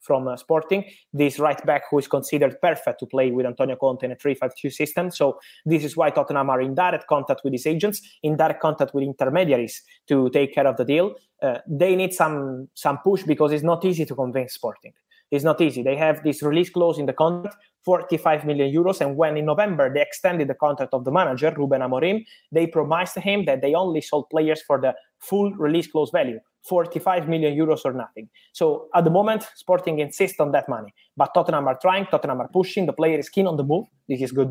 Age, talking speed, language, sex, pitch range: 20-39, 220 wpm, English, male, 140-180 Hz